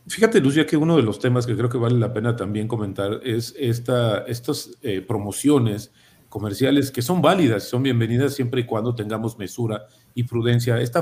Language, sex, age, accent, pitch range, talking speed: Spanish, male, 40-59, Mexican, 115-135 Hz, 185 wpm